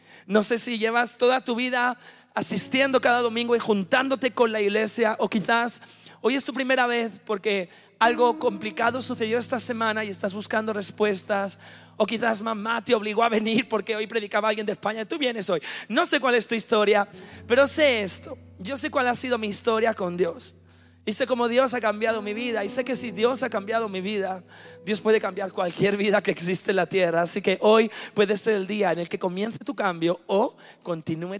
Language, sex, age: English, male, 30-49